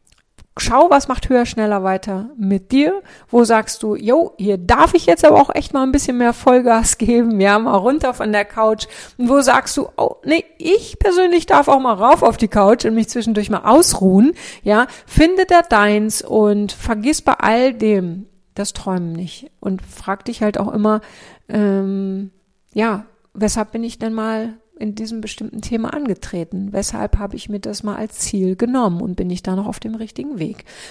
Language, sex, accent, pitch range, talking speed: German, female, German, 195-240 Hz, 190 wpm